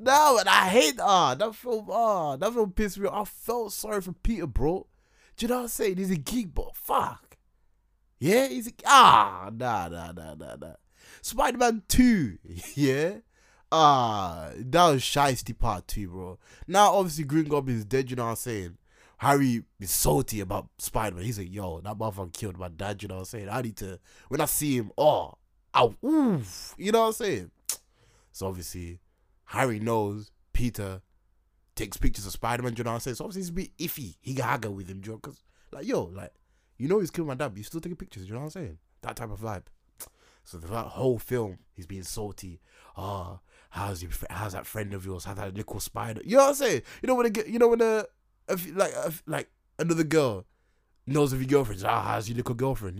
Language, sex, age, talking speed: English, male, 20-39, 225 wpm